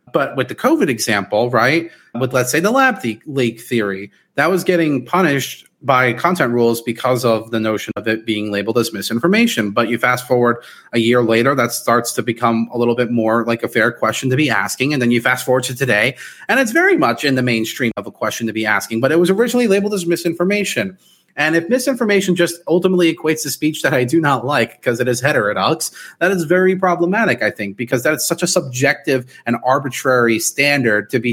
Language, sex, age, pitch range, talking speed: English, male, 30-49, 120-185 Hz, 215 wpm